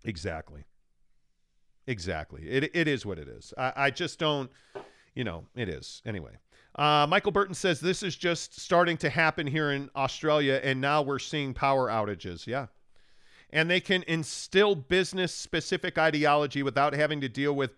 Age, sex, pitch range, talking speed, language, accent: 40-59, male, 105-155 Hz, 160 wpm, English, American